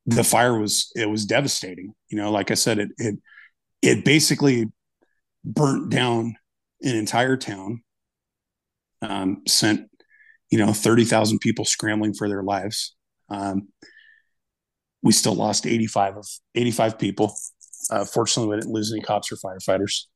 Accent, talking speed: American, 140 wpm